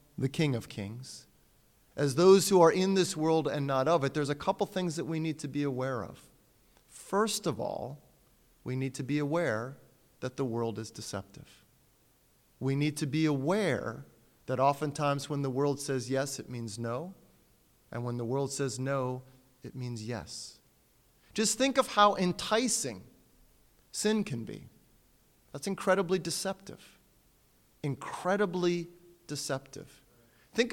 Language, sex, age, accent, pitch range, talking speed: English, male, 30-49, American, 130-195 Hz, 150 wpm